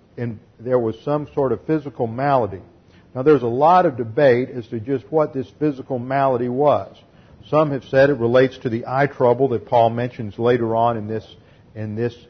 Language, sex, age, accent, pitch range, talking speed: English, male, 50-69, American, 110-125 Hz, 195 wpm